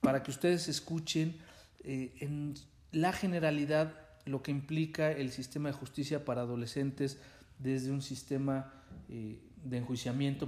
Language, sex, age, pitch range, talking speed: Spanish, male, 40-59, 125-150 Hz, 130 wpm